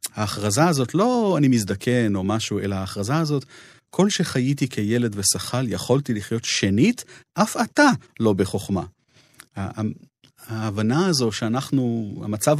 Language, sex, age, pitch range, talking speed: Hebrew, male, 40-59, 95-115 Hz, 120 wpm